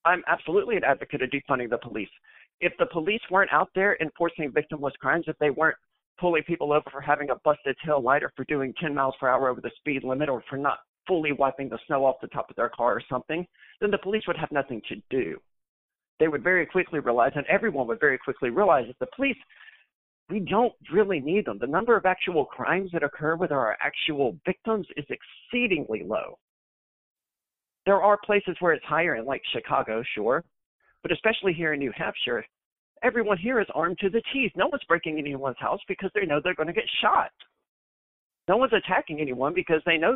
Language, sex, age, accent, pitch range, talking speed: English, male, 50-69, American, 140-190 Hz, 210 wpm